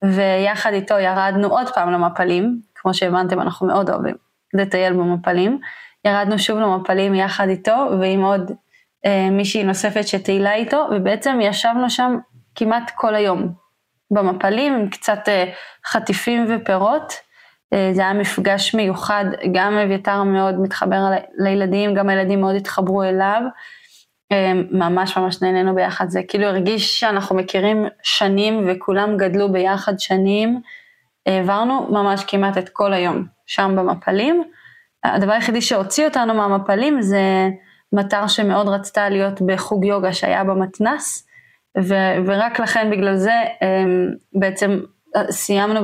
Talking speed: 125 wpm